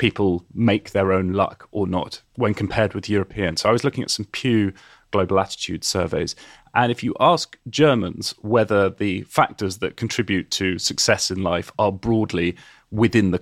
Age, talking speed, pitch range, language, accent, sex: 30-49, 175 wpm, 95-120 Hz, English, British, male